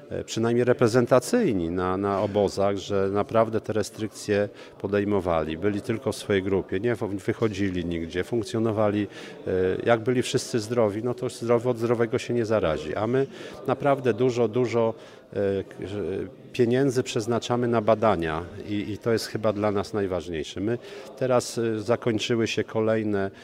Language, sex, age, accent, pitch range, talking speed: Polish, male, 50-69, native, 95-120 Hz, 135 wpm